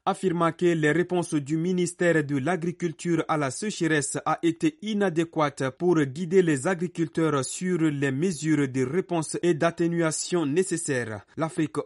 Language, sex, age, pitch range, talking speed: French, male, 30-49, 140-175 Hz, 135 wpm